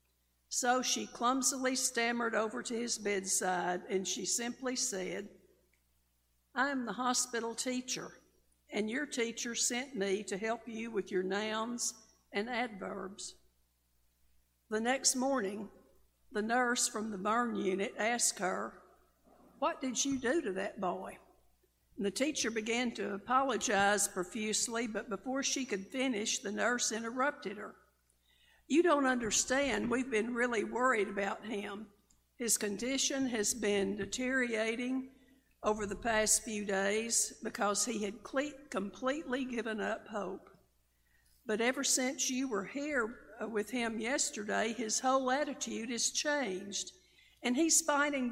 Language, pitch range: English, 200-255 Hz